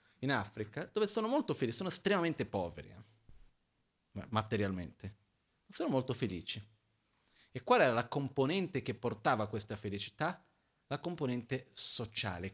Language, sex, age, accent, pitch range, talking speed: Italian, male, 30-49, native, 105-130 Hz, 130 wpm